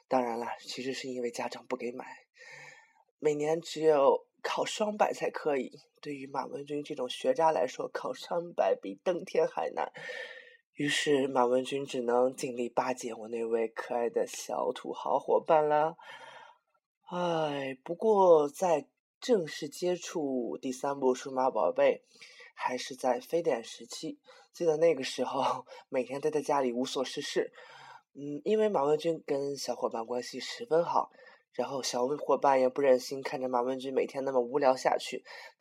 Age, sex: 20-39, male